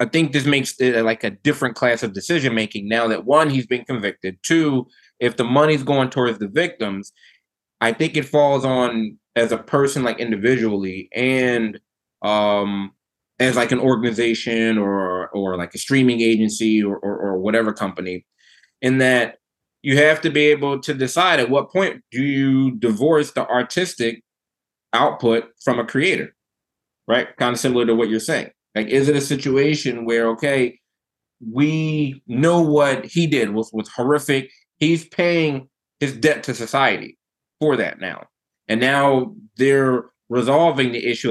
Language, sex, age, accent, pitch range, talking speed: English, male, 20-39, American, 115-145 Hz, 165 wpm